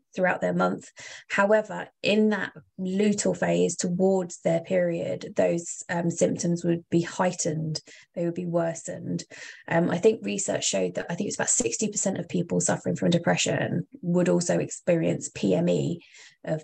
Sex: female